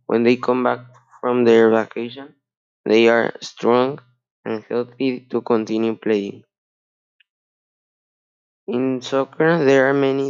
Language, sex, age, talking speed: English, male, 20-39, 115 wpm